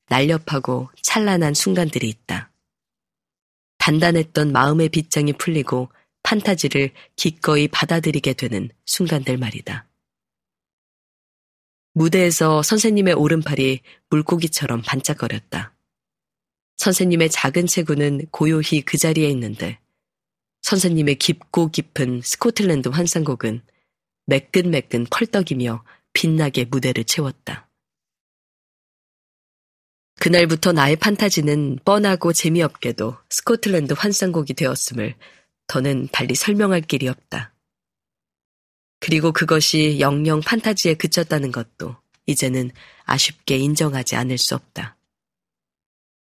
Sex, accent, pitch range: female, native, 130-175 Hz